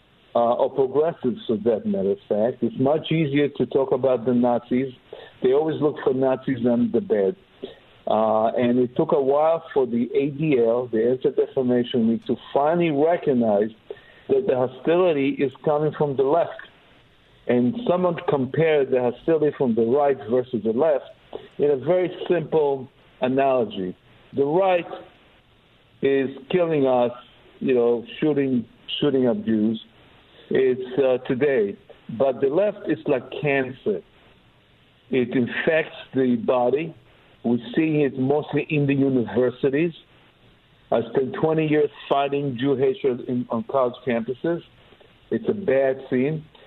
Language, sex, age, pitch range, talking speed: English, male, 60-79, 125-155 Hz, 140 wpm